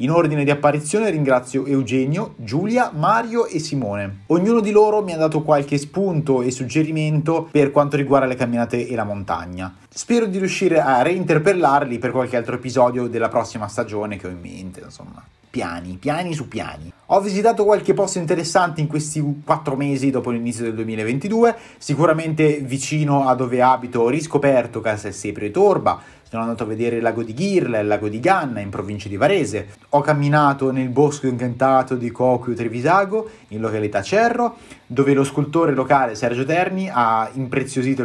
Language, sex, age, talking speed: Italian, male, 30-49, 170 wpm